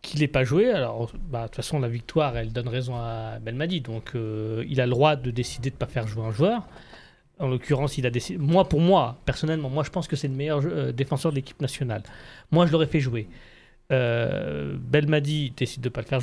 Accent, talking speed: French, 235 wpm